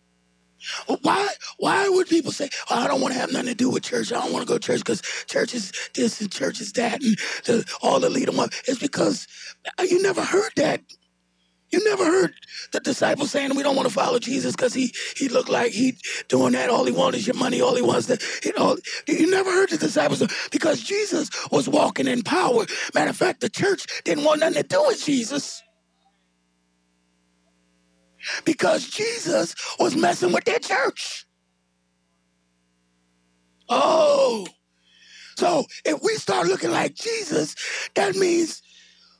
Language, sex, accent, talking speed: English, male, American, 175 wpm